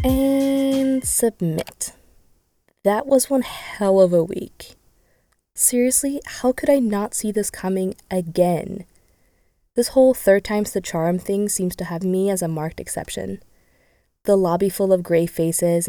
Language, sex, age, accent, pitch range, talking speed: English, female, 20-39, American, 170-215 Hz, 145 wpm